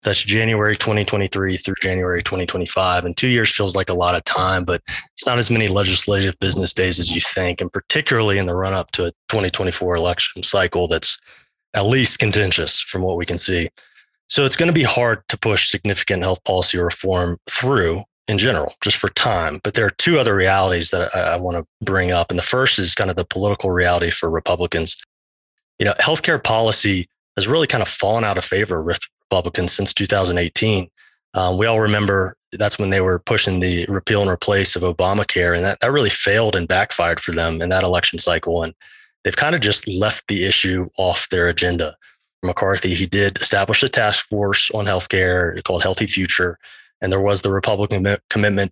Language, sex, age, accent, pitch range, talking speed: English, male, 20-39, American, 90-105 Hz, 195 wpm